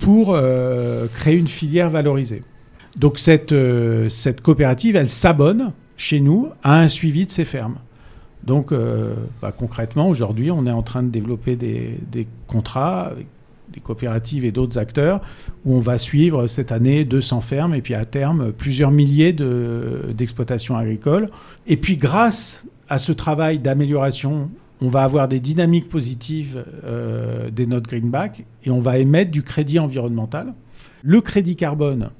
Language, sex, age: French, male, 50-69